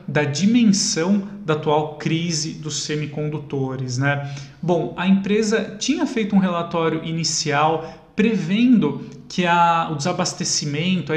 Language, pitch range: Portuguese, 155-195 Hz